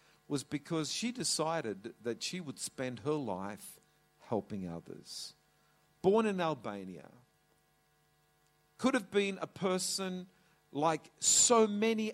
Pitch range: 120-180 Hz